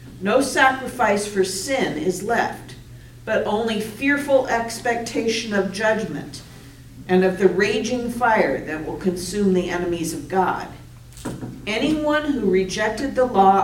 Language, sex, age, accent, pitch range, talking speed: English, female, 50-69, American, 180-225 Hz, 130 wpm